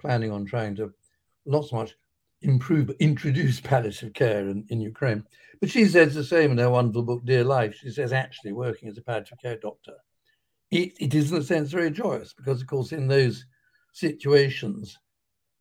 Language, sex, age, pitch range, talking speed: English, male, 60-79, 120-155 Hz, 185 wpm